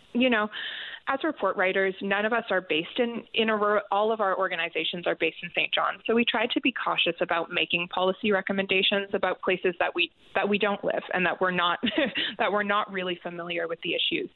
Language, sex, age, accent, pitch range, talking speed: English, female, 20-39, American, 180-220 Hz, 215 wpm